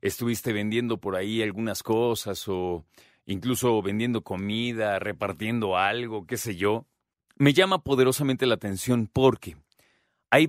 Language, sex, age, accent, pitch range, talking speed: Spanish, male, 40-59, Mexican, 105-135 Hz, 125 wpm